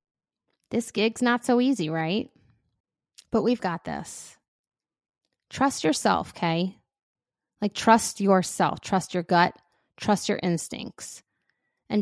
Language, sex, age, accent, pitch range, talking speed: English, female, 20-39, American, 170-215 Hz, 115 wpm